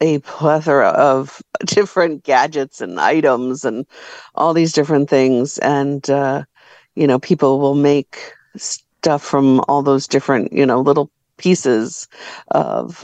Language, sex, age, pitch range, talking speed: English, female, 50-69, 135-155 Hz, 135 wpm